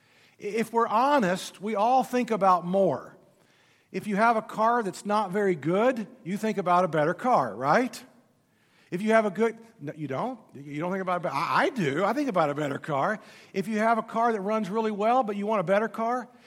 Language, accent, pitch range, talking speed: English, American, 195-240 Hz, 210 wpm